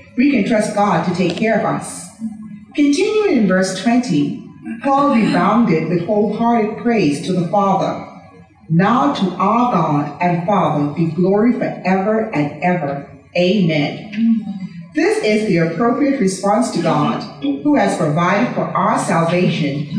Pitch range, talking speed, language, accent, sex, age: 175-230 Hz, 140 wpm, English, American, female, 40-59